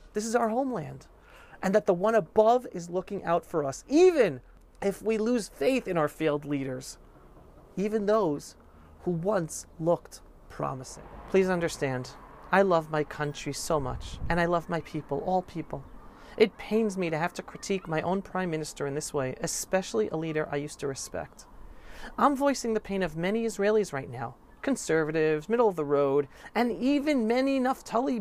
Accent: American